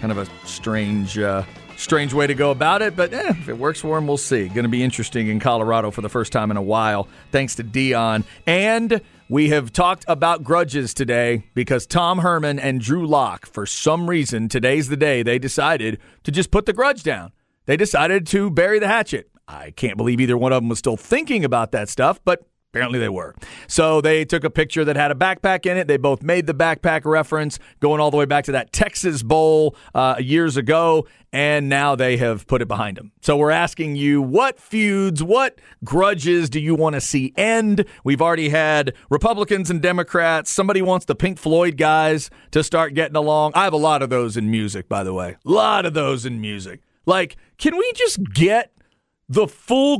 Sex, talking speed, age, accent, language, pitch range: male, 210 wpm, 40-59, American, English, 125-170 Hz